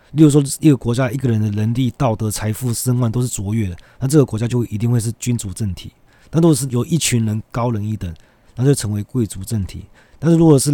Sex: male